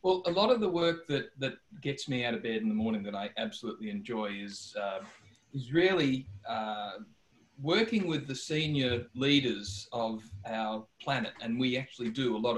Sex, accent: male, Australian